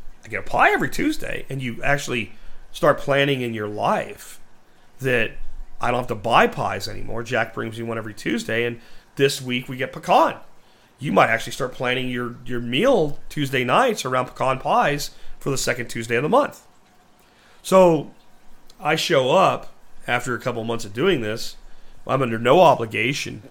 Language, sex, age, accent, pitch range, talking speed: English, male, 40-59, American, 120-170 Hz, 175 wpm